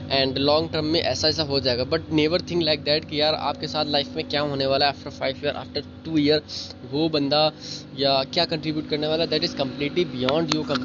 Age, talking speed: 20-39, 230 wpm